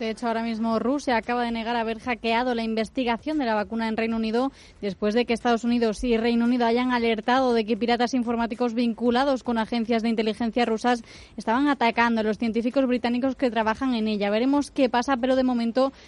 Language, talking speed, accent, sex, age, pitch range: Spanish, 200 wpm, Spanish, female, 20-39, 230-260 Hz